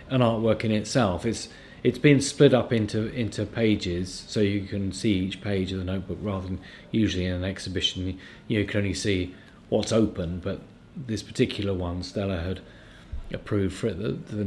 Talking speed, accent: 180 wpm, British